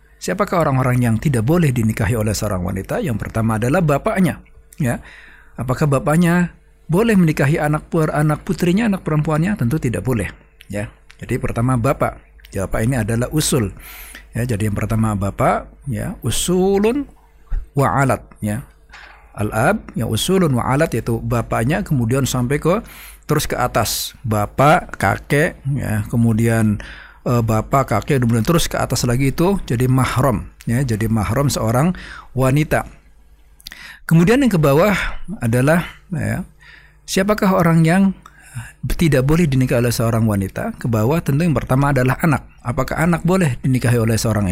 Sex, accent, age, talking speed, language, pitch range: male, native, 50-69, 140 wpm, Indonesian, 110-155 Hz